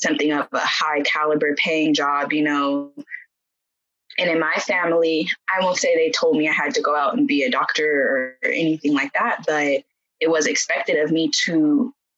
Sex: female